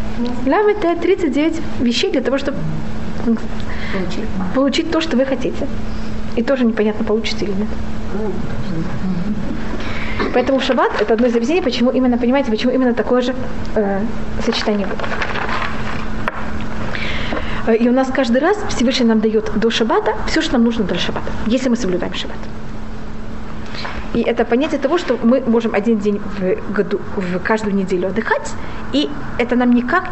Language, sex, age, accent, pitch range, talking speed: Russian, female, 20-39, native, 210-260 Hz, 145 wpm